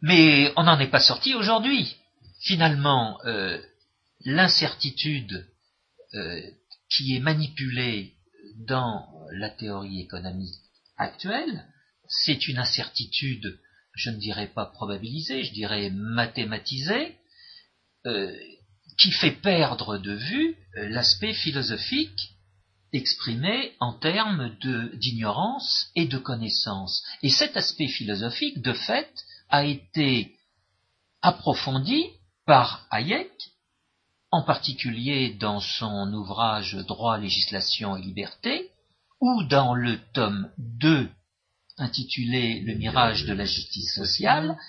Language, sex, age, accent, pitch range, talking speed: French, male, 50-69, French, 105-155 Hz, 105 wpm